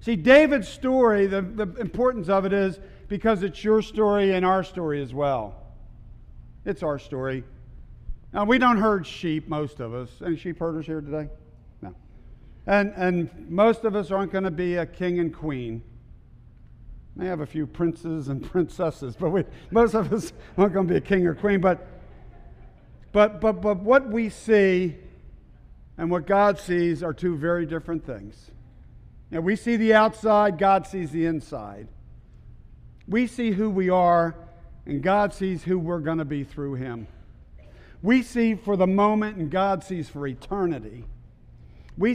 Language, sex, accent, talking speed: English, male, American, 170 wpm